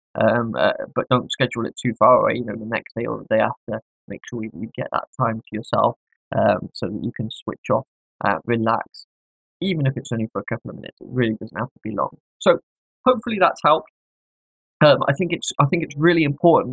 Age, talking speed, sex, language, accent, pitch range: 20-39, 225 wpm, male, English, British, 120-135 Hz